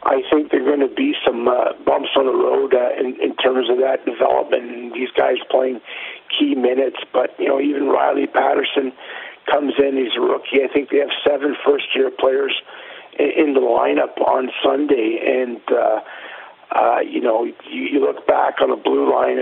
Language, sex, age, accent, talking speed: English, male, 50-69, American, 190 wpm